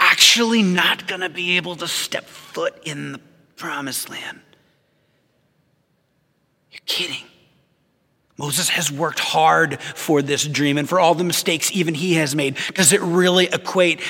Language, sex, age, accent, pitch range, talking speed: English, male, 30-49, American, 140-175 Hz, 150 wpm